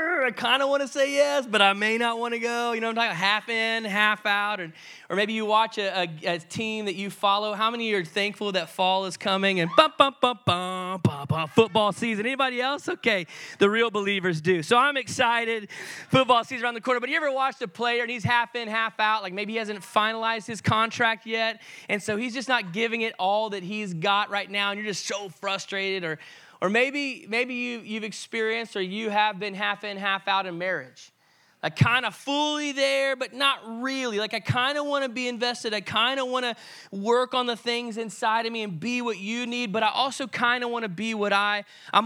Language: English